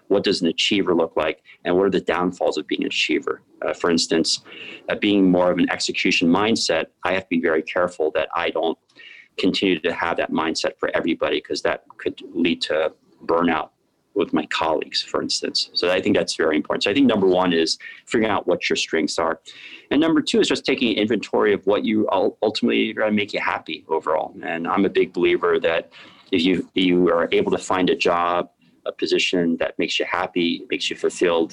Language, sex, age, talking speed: English, male, 30-49, 210 wpm